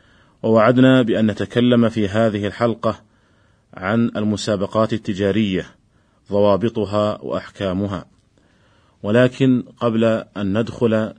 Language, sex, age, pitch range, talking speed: Arabic, male, 40-59, 105-120 Hz, 80 wpm